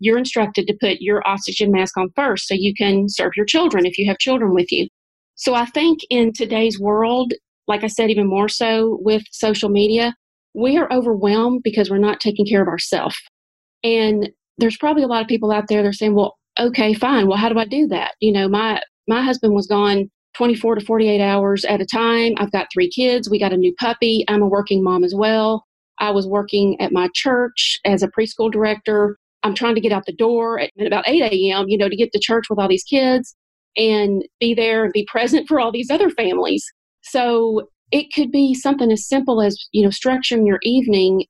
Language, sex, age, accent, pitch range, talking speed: English, female, 30-49, American, 205-240 Hz, 220 wpm